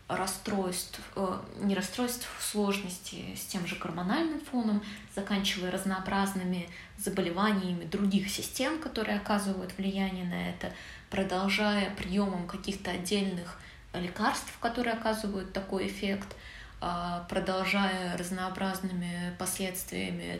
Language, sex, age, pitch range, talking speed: Russian, female, 20-39, 180-205 Hz, 95 wpm